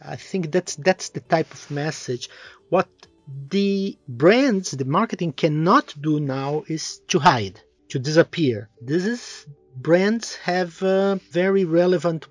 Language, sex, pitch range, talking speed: Portuguese, male, 135-180 Hz, 135 wpm